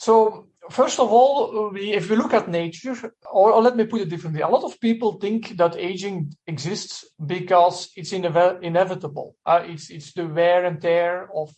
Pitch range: 165-195 Hz